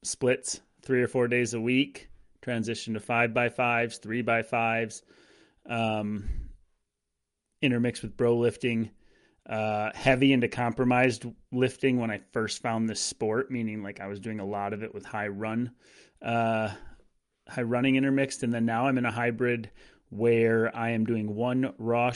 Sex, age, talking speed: male, 30-49, 160 wpm